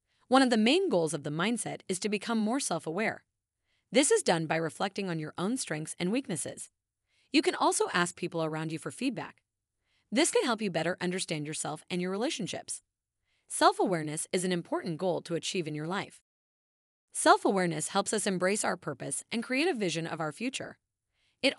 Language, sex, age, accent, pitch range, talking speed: English, female, 30-49, American, 160-230 Hz, 185 wpm